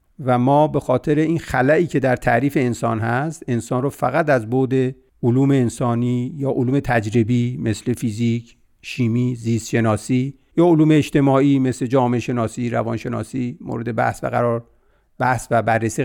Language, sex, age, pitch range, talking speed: Persian, male, 50-69, 120-160 Hz, 155 wpm